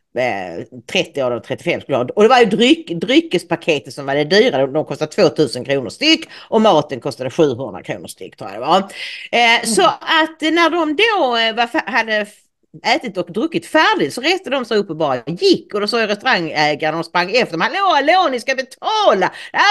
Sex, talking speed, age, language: female, 195 wpm, 40-59, English